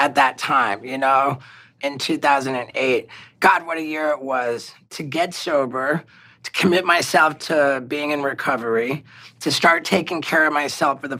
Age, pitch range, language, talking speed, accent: 30-49, 140-165 Hz, English, 165 wpm, American